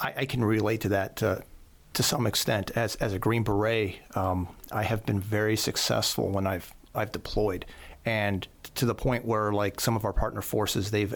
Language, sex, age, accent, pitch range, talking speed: English, male, 40-59, American, 105-130 Hz, 195 wpm